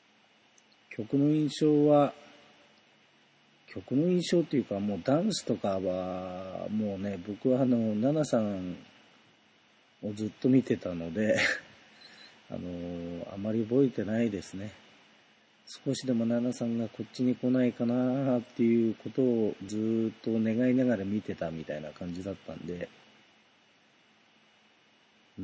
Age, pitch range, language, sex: 40-59, 100-125 Hz, Japanese, male